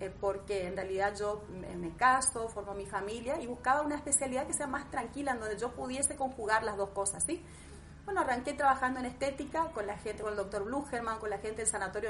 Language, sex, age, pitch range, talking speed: Spanish, female, 30-49, 210-260 Hz, 215 wpm